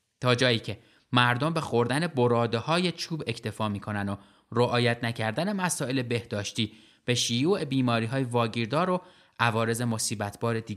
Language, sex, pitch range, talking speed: Persian, male, 110-145 Hz, 130 wpm